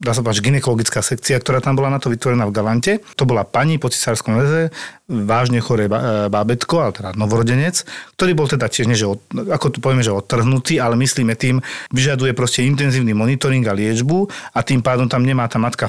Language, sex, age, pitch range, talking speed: Slovak, male, 40-59, 110-140 Hz, 195 wpm